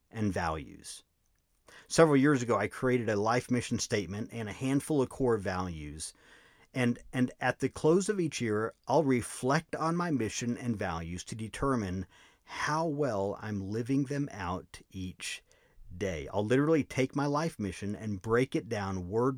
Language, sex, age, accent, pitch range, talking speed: English, male, 50-69, American, 100-140 Hz, 165 wpm